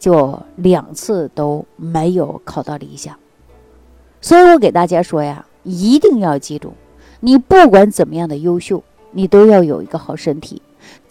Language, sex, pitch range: Chinese, female, 155-220 Hz